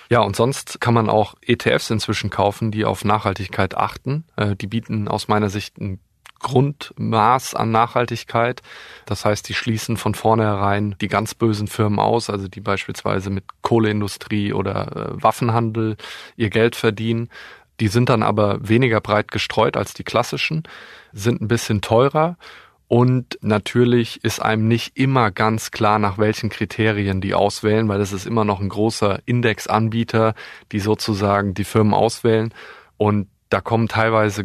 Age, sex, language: 20-39, male, German